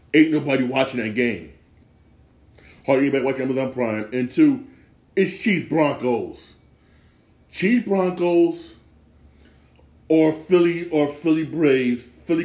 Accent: American